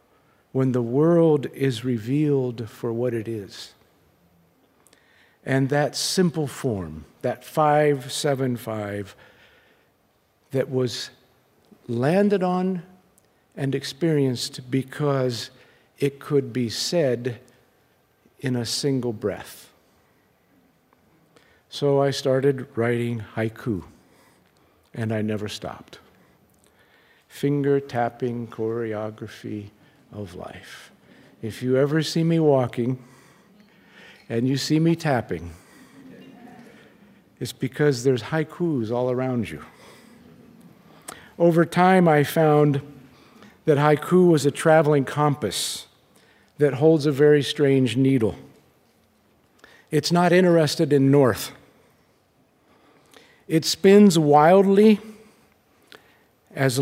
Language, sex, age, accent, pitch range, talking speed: English, male, 50-69, American, 120-155 Hz, 90 wpm